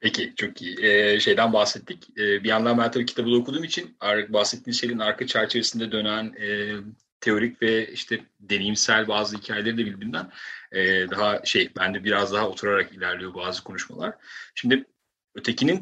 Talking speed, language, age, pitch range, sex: 150 wpm, Turkish, 40-59, 100-120 Hz, male